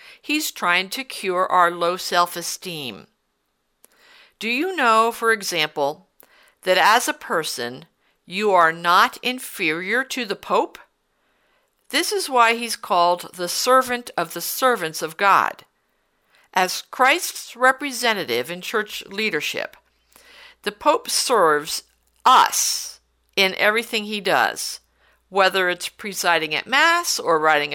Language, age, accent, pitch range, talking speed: English, 60-79, American, 175-260 Hz, 120 wpm